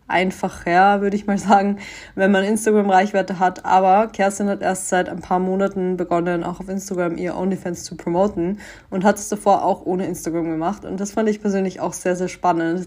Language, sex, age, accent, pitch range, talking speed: German, female, 20-39, German, 175-200 Hz, 200 wpm